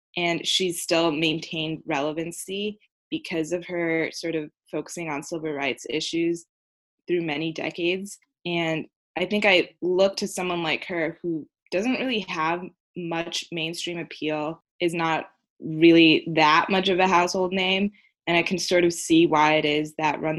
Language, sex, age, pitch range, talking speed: English, female, 20-39, 155-180 Hz, 160 wpm